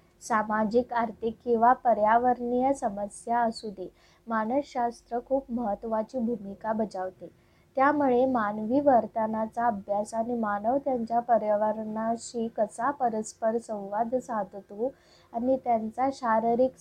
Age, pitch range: 20-39, 210-245 Hz